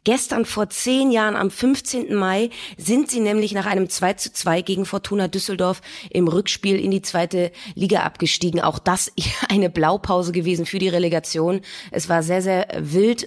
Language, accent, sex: German, German, female